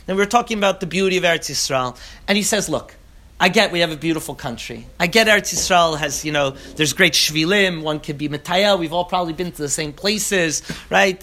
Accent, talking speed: American, 225 wpm